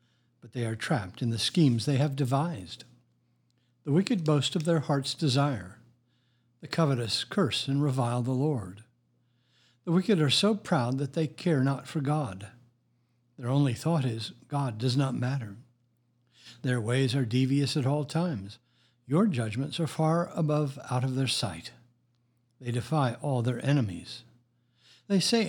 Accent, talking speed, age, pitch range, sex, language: American, 155 wpm, 60-79, 120-150 Hz, male, English